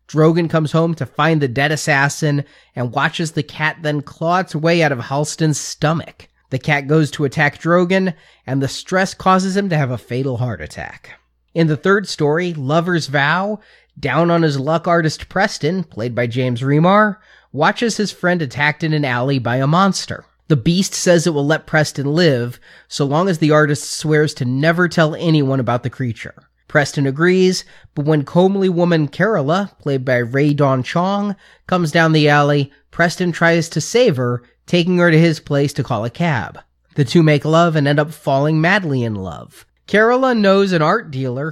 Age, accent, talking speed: 30-49, American, 190 wpm